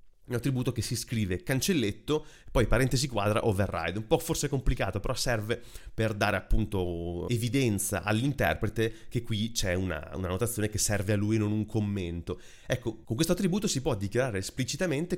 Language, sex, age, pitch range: Italian, male, 30-49, 95-130 Hz